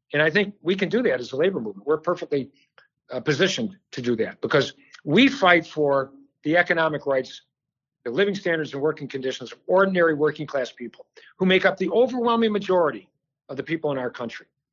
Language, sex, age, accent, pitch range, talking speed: English, male, 50-69, American, 145-195 Hz, 195 wpm